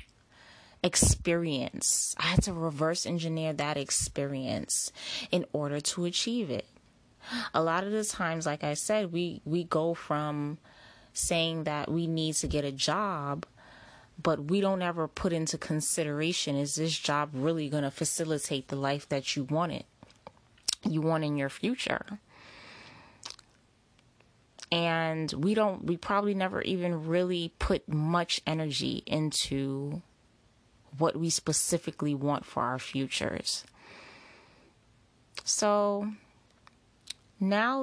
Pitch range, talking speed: 140-175 Hz, 125 wpm